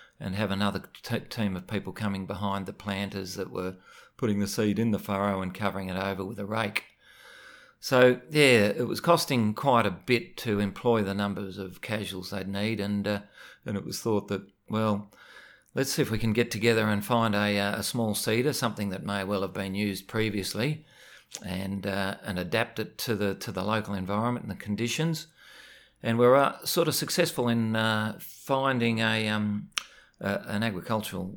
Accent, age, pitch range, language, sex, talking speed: Australian, 40-59, 100-115 Hz, English, male, 190 wpm